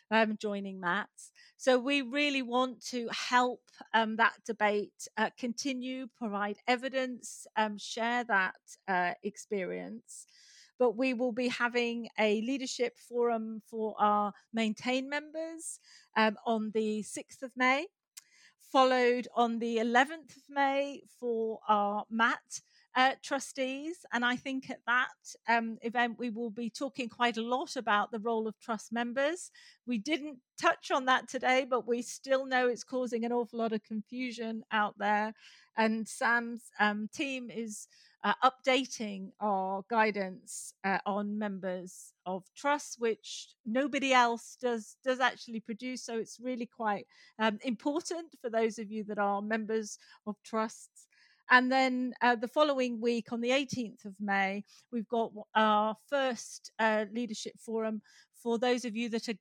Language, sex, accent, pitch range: English, female, British, 215-255 Hz